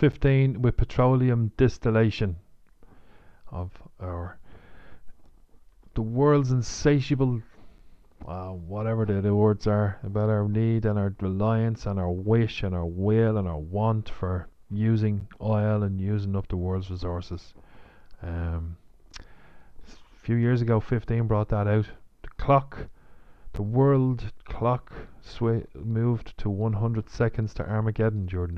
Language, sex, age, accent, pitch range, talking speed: English, male, 40-59, Irish, 90-115 Hz, 130 wpm